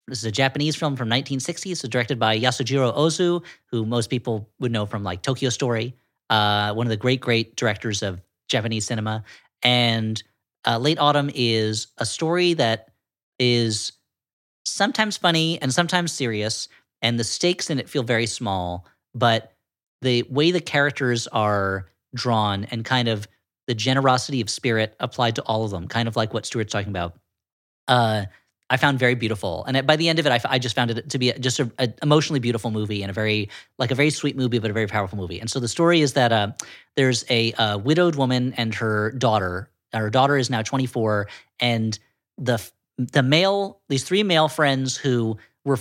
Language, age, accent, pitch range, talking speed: English, 40-59, American, 110-140 Hz, 195 wpm